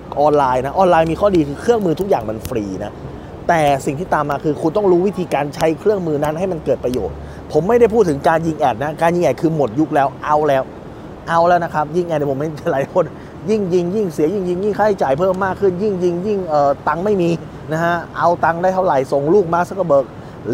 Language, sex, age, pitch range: Thai, male, 20-39, 140-185 Hz